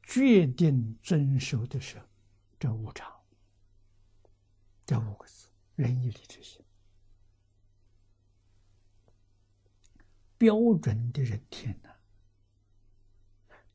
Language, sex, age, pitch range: Chinese, male, 60-79, 100-130 Hz